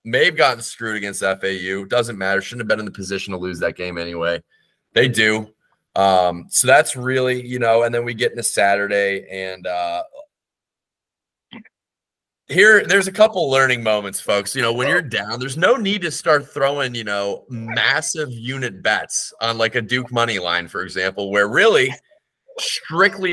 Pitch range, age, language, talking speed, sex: 100-145 Hz, 30-49, English, 175 wpm, male